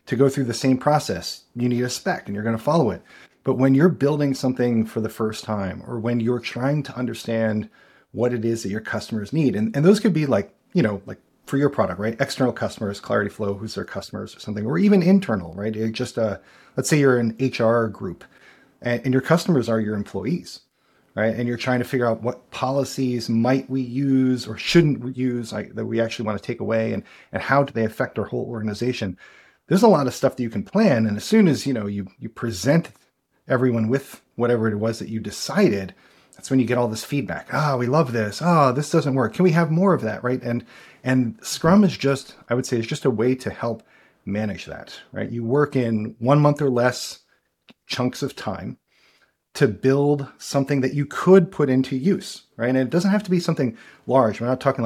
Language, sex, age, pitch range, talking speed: English, male, 30-49, 110-135 Hz, 230 wpm